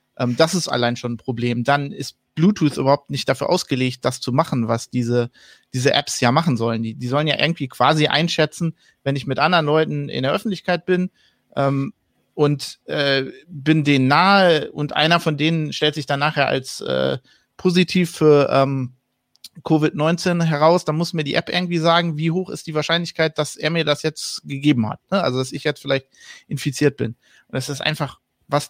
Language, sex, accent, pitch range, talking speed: German, male, German, 135-165 Hz, 190 wpm